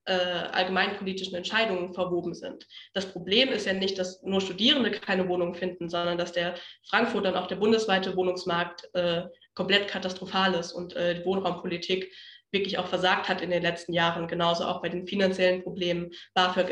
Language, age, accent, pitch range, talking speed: German, 20-39, German, 185-205 Hz, 170 wpm